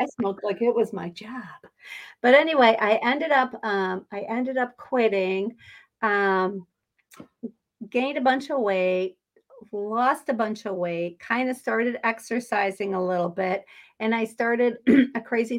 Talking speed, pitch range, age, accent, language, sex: 155 wpm, 185-225 Hz, 50-69, American, English, female